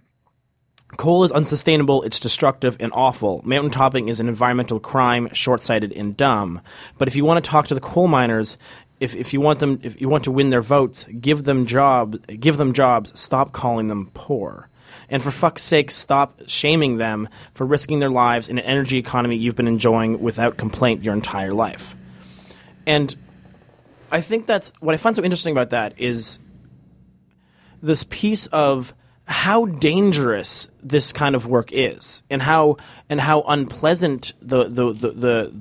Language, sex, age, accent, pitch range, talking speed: English, male, 20-39, American, 120-150 Hz, 165 wpm